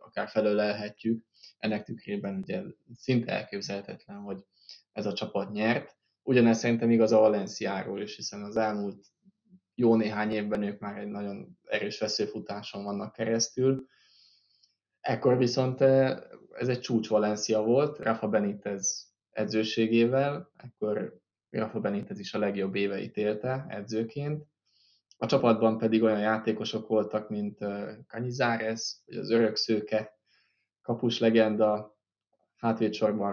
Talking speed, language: 115 wpm, Hungarian